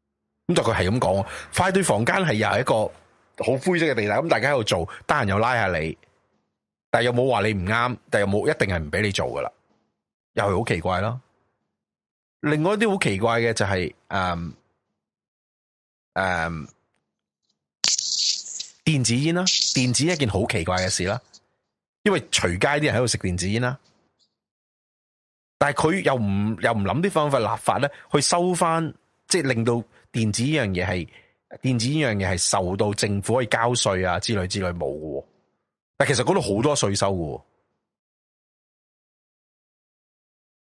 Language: Chinese